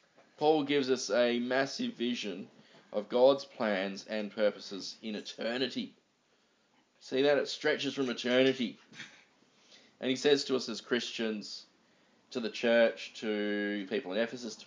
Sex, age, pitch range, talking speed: male, 20-39, 105-130 Hz, 140 wpm